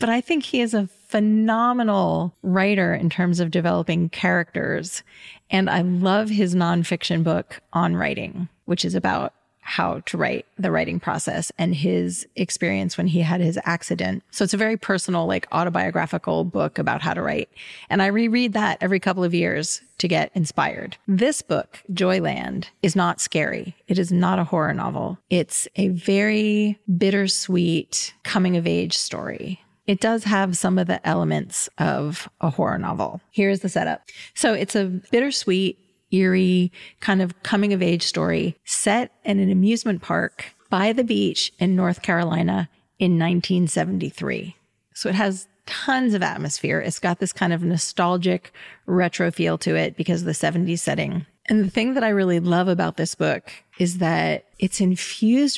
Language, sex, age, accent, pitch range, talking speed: English, female, 30-49, American, 170-205 Hz, 165 wpm